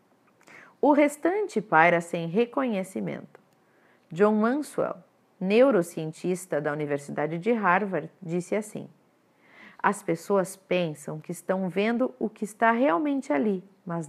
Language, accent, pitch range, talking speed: Portuguese, Brazilian, 165-225 Hz, 110 wpm